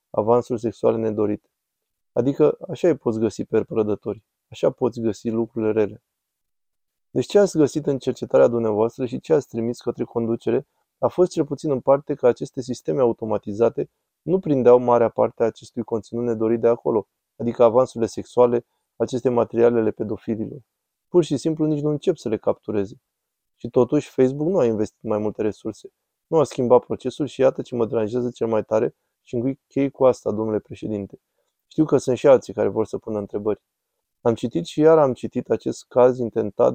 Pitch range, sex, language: 110-130 Hz, male, Romanian